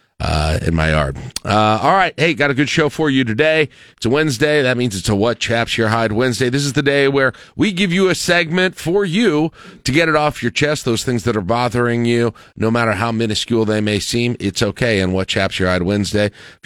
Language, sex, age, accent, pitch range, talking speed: English, male, 40-59, American, 100-130 Hz, 240 wpm